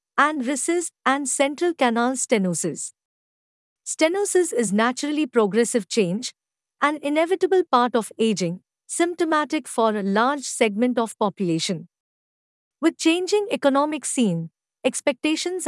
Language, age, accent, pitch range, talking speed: English, 50-69, Indian, 215-285 Hz, 105 wpm